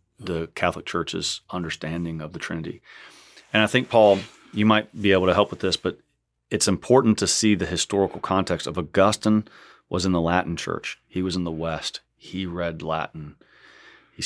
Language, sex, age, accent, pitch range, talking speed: English, male, 30-49, American, 80-100 Hz, 180 wpm